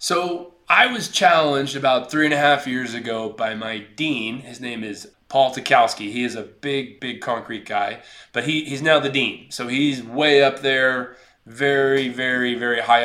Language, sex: English, male